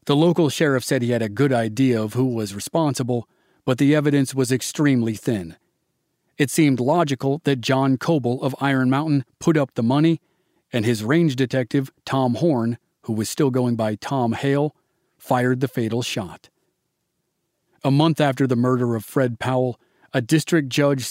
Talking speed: 170 wpm